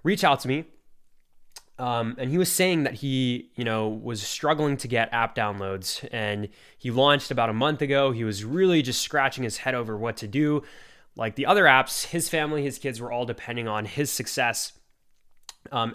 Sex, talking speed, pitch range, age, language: male, 195 wpm, 115-140 Hz, 20-39, English